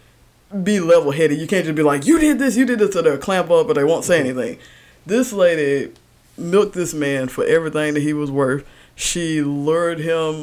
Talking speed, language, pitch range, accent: 205 wpm, English, 150-215 Hz, American